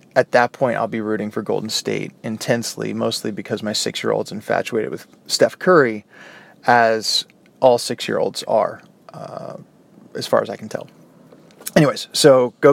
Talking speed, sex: 150 wpm, male